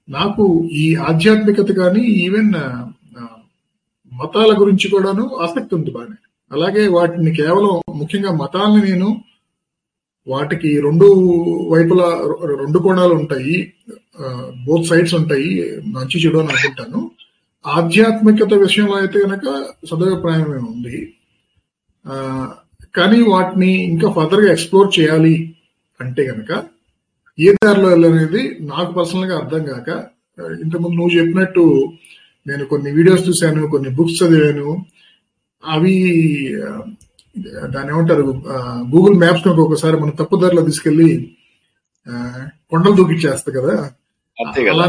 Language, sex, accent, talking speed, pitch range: Telugu, male, native, 100 wpm, 150-195 Hz